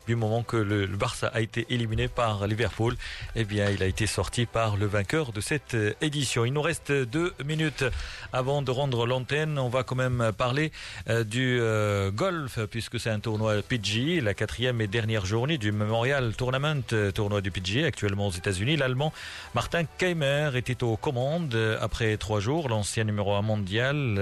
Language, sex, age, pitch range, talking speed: Arabic, male, 40-59, 105-130 Hz, 180 wpm